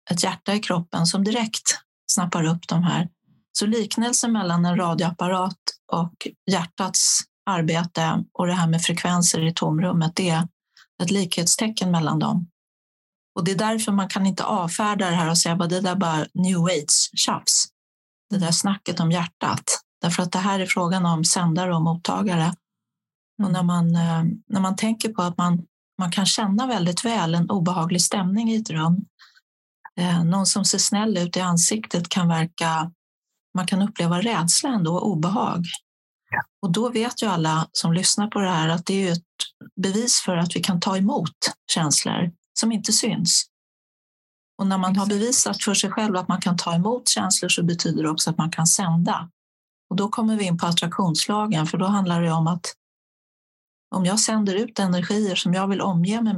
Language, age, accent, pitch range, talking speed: Swedish, 30-49, native, 170-205 Hz, 180 wpm